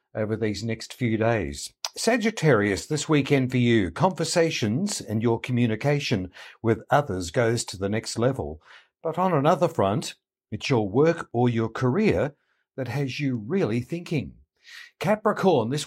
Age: 60-79